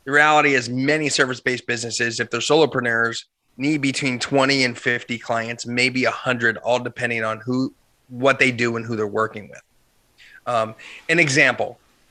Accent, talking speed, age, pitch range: American, 165 wpm, 30-49, 115-145 Hz